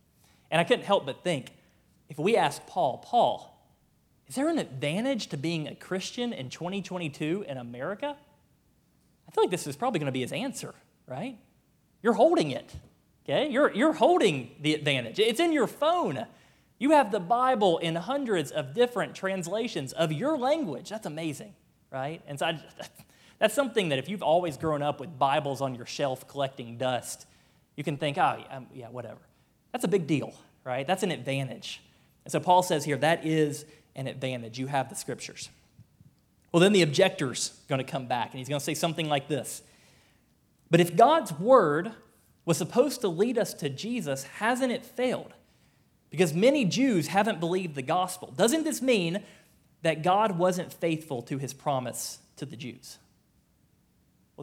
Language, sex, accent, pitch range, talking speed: English, male, American, 140-210 Hz, 175 wpm